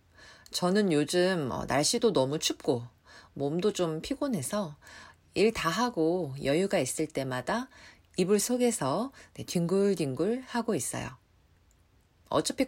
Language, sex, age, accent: Korean, female, 40-59, native